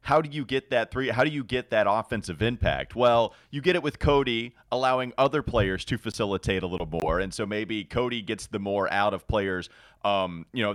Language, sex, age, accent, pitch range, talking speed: English, male, 30-49, American, 100-135 Hz, 225 wpm